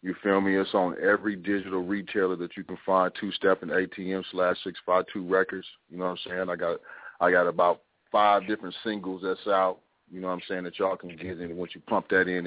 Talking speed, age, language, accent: 230 wpm, 30-49, English, American